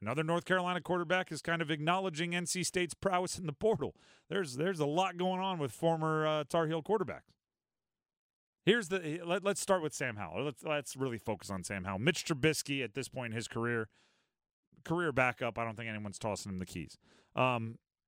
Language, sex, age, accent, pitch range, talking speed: English, male, 40-59, American, 120-170 Hz, 200 wpm